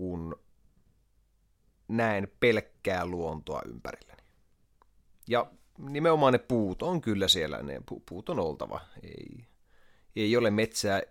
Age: 30-49